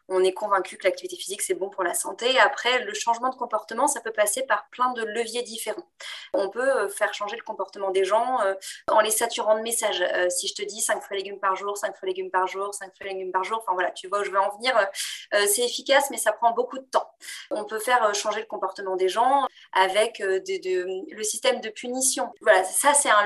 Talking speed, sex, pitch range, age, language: 235 wpm, female, 195-255 Hz, 20-39, French